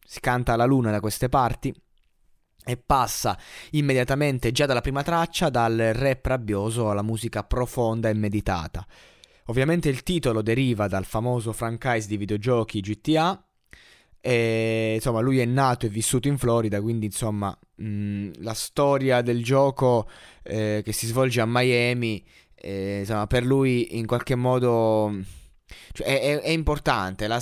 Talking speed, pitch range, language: 145 wpm, 105-135 Hz, Italian